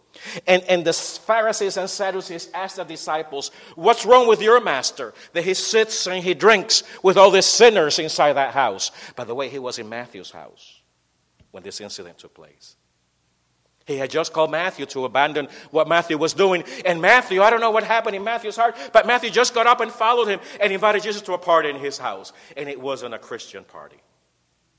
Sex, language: male, English